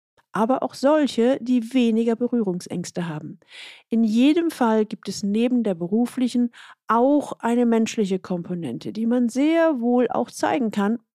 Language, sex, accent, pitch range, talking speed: German, female, German, 195-255 Hz, 140 wpm